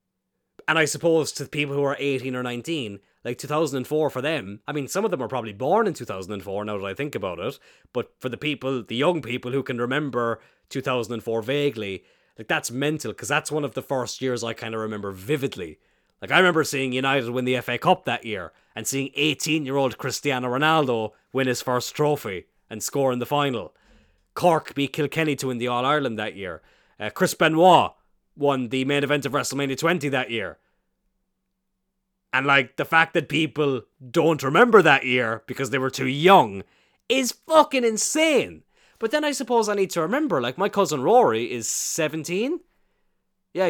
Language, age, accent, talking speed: English, 30-49, Irish, 190 wpm